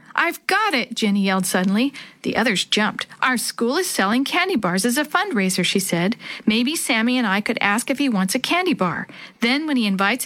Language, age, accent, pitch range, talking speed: English, 50-69, American, 205-265 Hz, 210 wpm